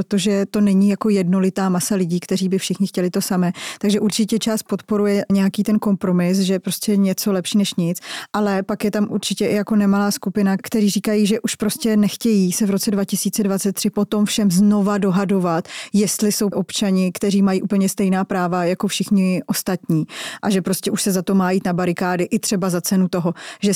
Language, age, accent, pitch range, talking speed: Czech, 20-39, native, 180-205 Hz, 190 wpm